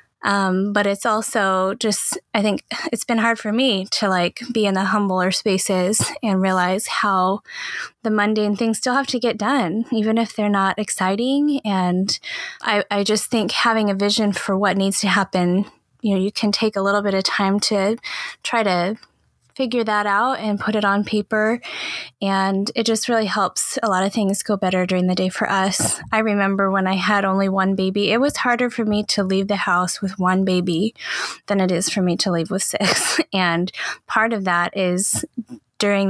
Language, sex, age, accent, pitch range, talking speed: English, female, 10-29, American, 190-225 Hz, 200 wpm